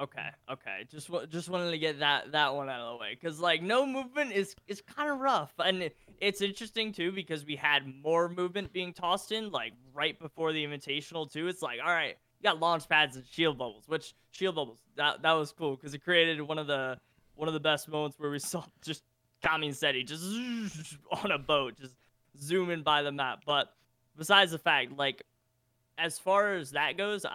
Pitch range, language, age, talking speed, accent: 140-175 Hz, English, 20-39, 210 wpm, American